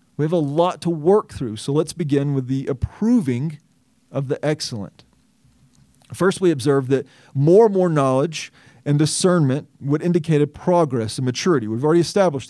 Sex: male